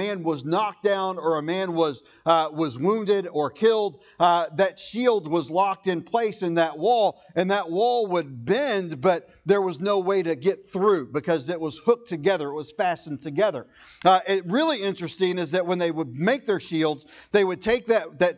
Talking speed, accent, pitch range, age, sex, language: 200 wpm, American, 170-210 Hz, 40-59, male, English